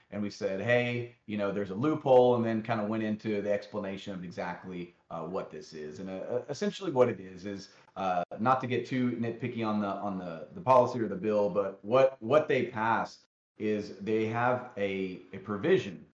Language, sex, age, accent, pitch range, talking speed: English, male, 30-49, American, 105-125 Hz, 210 wpm